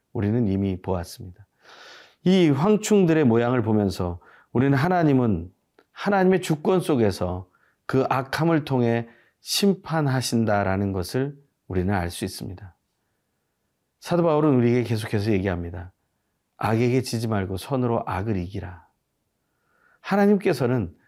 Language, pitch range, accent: Korean, 100-160 Hz, native